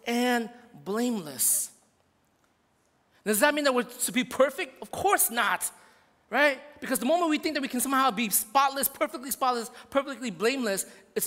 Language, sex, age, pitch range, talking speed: English, male, 30-49, 220-285 Hz, 160 wpm